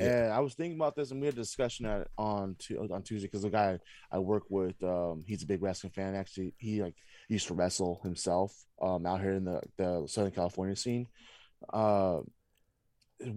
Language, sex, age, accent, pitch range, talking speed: English, male, 20-39, American, 100-115 Hz, 200 wpm